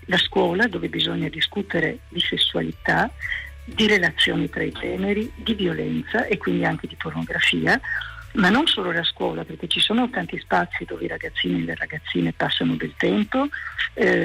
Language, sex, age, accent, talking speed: Italian, female, 50-69, native, 165 wpm